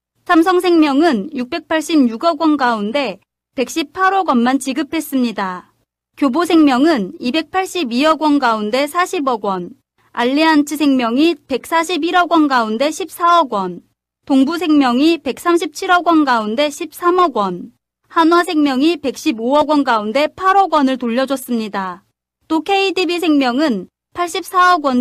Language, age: Korean, 30-49